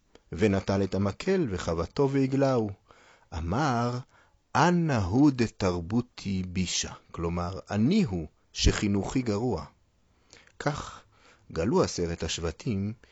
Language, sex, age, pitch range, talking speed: Hebrew, male, 40-59, 85-120 Hz, 80 wpm